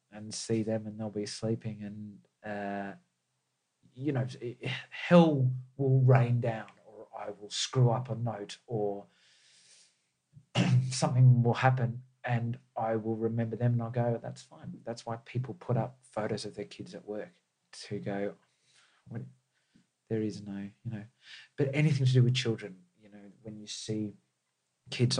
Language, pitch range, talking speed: English, 100-125 Hz, 155 wpm